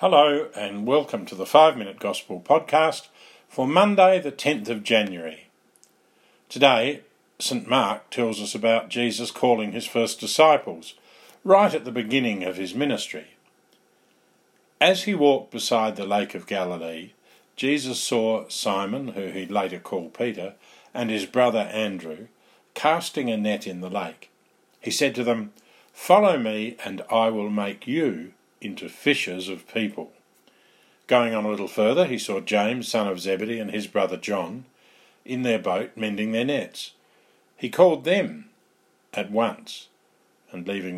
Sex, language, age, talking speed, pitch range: male, English, 50-69, 150 wpm, 100-130 Hz